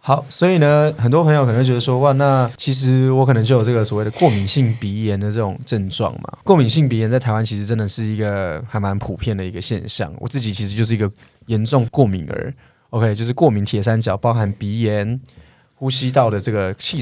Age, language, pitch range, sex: 20-39, Chinese, 105-130 Hz, male